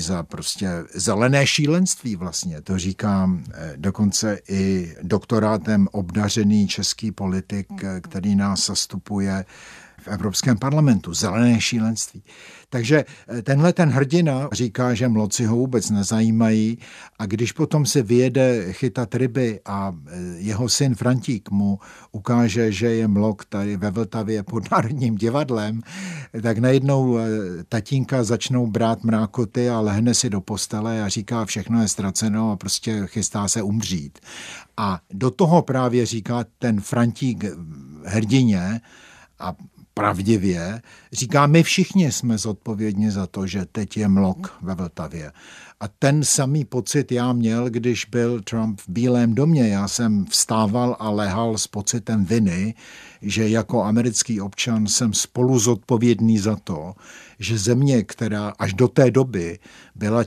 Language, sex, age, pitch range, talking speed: Czech, male, 60-79, 100-125 Hz, 135 wpm